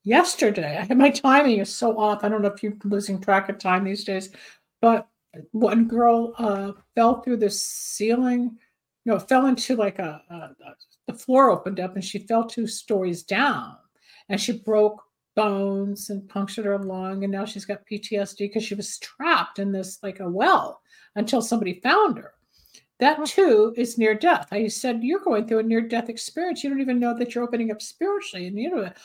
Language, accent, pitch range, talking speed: English, American, 200-260 Hz, 195 wpm